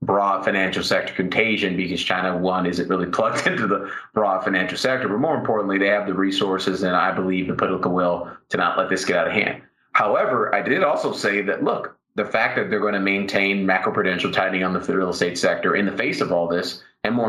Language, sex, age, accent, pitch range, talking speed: English, male, 30-49, American, 95-105 Hz, 225 wpm